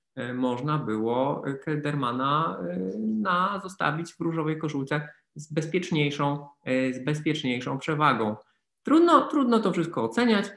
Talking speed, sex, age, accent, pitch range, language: 100 wpm, male, 20-39, native, 130-170 Hz, Polish